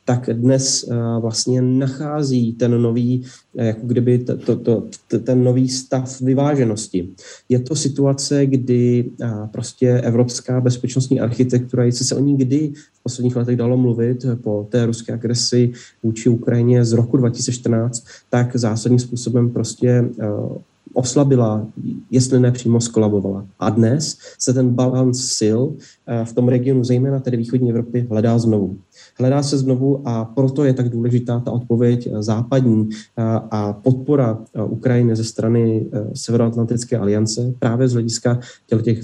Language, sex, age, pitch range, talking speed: Slovak, male, 30-49, 115-130 Hz, 135 wpm